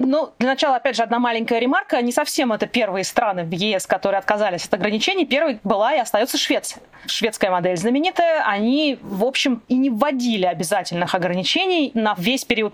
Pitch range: 200-260 Hz